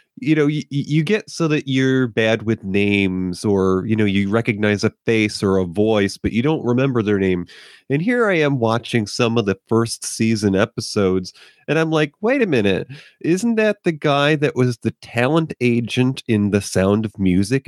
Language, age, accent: English, 30-49, American